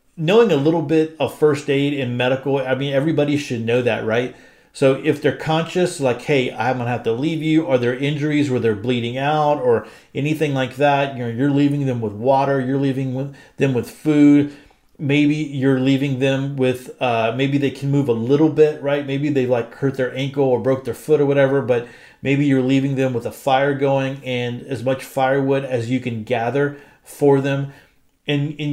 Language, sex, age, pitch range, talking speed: English, male, 40-59, 130-150 Hz, 210 wpm